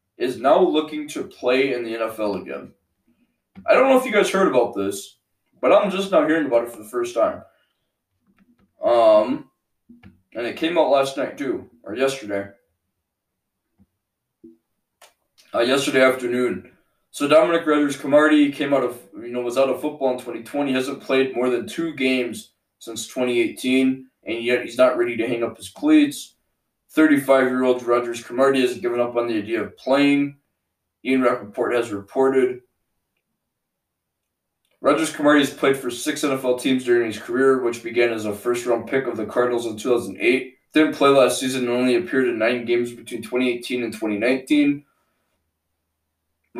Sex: male